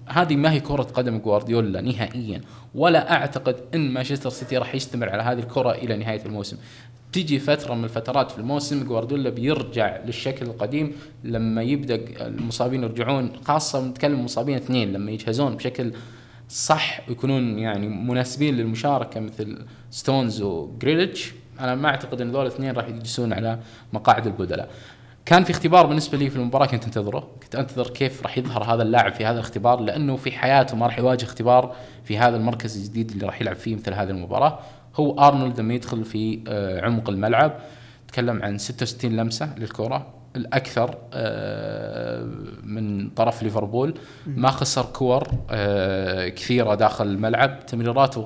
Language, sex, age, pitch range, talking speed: Arabic, male, 20-39, 115-135 Hz, 150 wpm